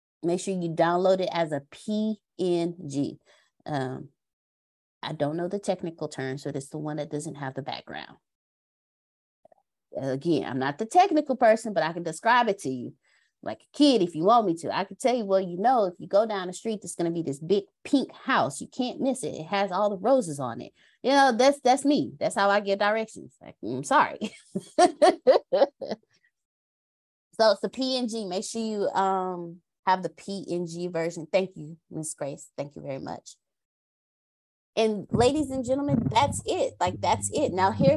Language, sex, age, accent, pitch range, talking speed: English, female, 20-39, American, 175-255 Hz, 190 wpm